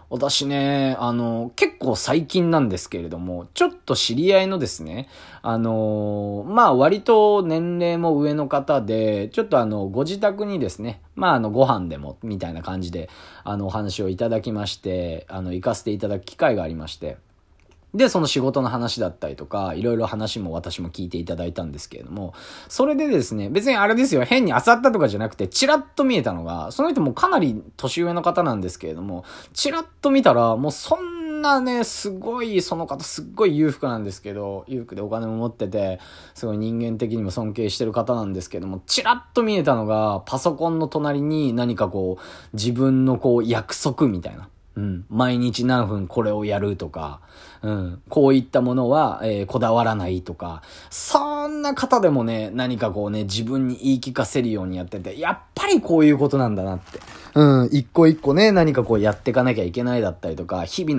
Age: 20-39